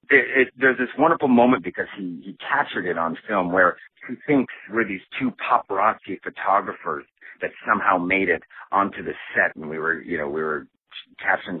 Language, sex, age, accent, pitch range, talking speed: English, male, 40-59, American, 90-120 Hz, 185 wpm